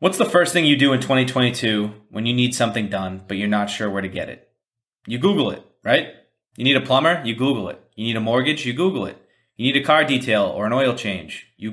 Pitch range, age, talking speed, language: 110-140 Hz, 30-49, 250 wpm, English